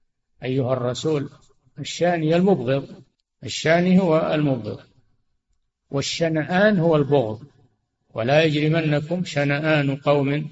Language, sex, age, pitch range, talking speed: Arabic, male, 60-79, 130-160 Hz, 80 wpm